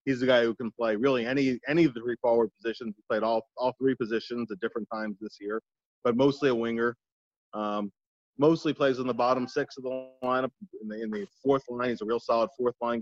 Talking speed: 235 wpm